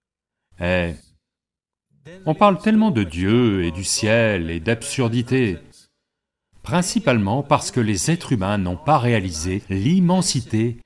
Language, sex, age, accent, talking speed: English, male, 40-59, French, 115 wpm